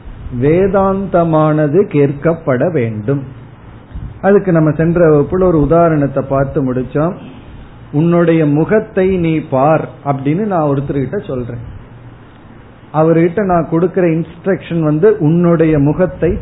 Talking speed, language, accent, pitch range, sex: 90 wpm, Tamil, native, 135-180 Hz, male